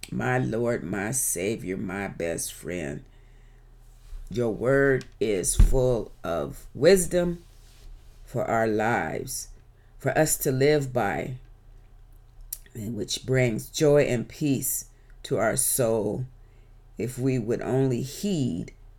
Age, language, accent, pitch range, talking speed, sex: 40-59, English, American, 105-130 Hz, 110 wpm, female